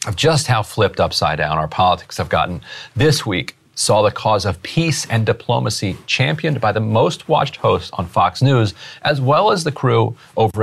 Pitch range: 100-130 Hz